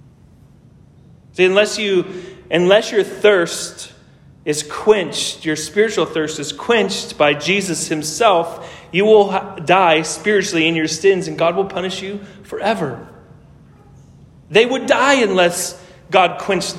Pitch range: 145-195 Hz